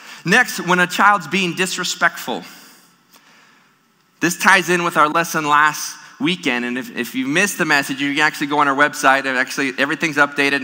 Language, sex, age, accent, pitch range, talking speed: English, male, 30-49, American, 140-185 Hz, 180 wpm